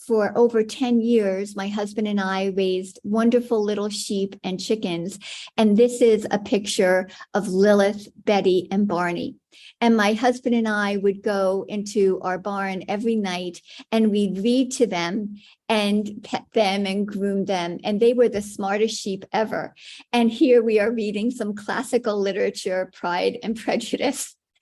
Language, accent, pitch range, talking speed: English, American, 200-235 Hz, 160 wpm